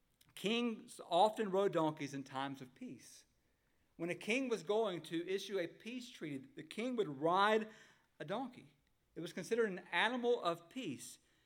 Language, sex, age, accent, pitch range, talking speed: English, male, 50-69, American, 160-220 Hz, 160 wpm